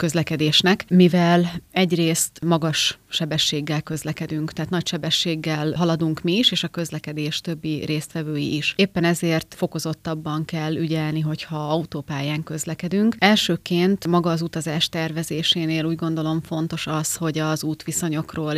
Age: 30-49